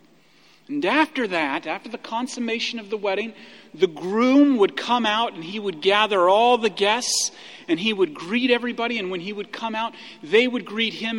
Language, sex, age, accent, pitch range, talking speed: English, male, 40-59, American, 200-295 Hz, 195 wpm